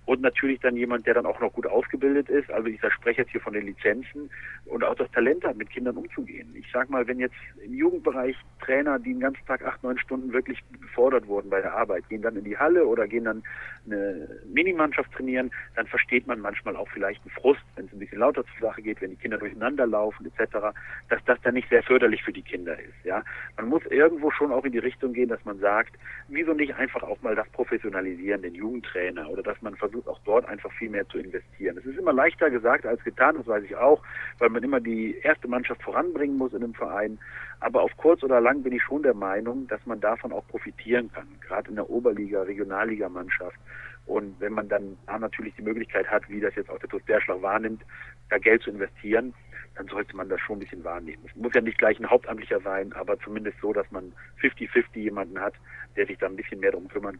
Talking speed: 230 wpm